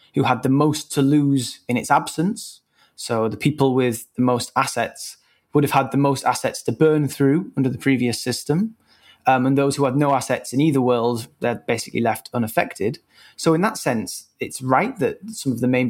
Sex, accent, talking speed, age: male, British, 205 wpm, 20-39